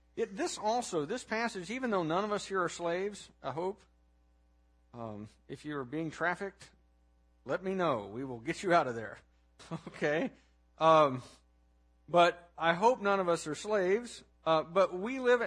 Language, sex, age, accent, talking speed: English, male, 50-69, American, 165 wpm